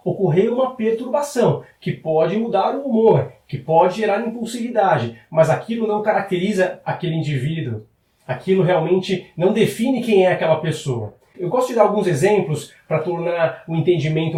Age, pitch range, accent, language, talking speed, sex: 30-49, 155-210 Hz, Brazilian, Portuguese, 150 wpm, male